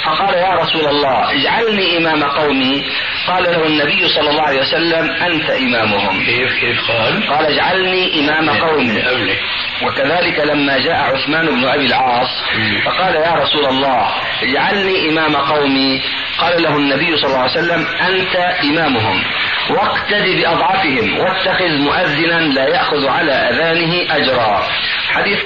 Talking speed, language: 125 wpm, Arabic